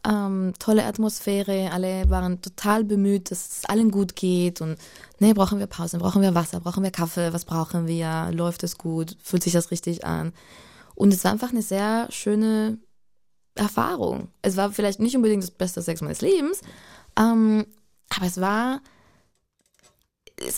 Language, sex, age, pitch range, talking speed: German, female, 20-39, 175-215 Hz, 165 wpm